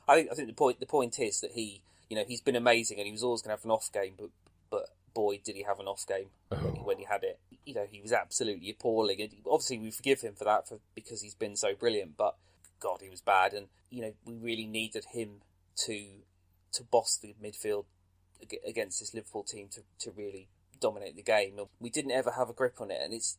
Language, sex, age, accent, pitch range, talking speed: English, male, 30-49, British, 100-120 Hz, 245 wpm